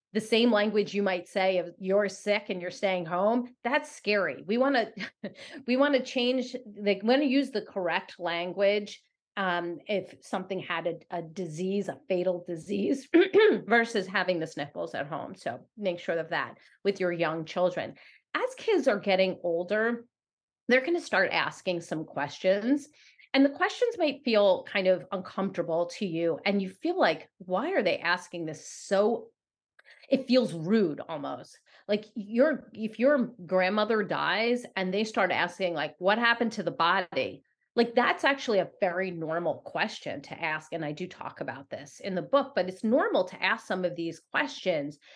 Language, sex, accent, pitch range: English, female, American, 180-240 Hz